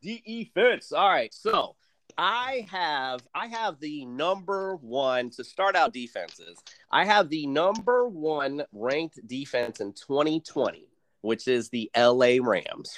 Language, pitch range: English, 130-215 Hz